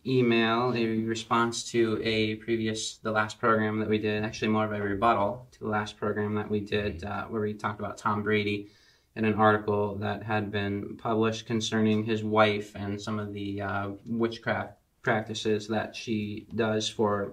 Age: 20-39